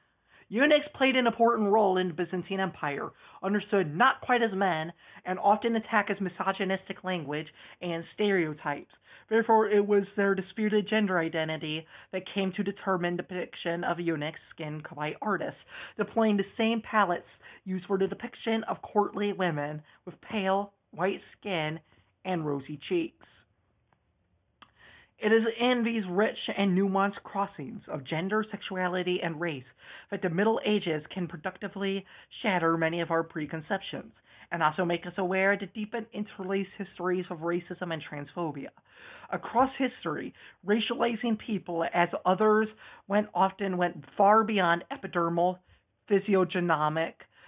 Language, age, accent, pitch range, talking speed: English, 40-59, American, 170-205 Hz, 135 wpm